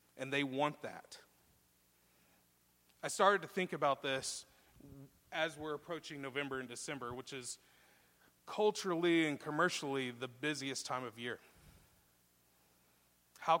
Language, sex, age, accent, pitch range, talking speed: English, male, 30-49, American, 125-160 Hz, 120 wpm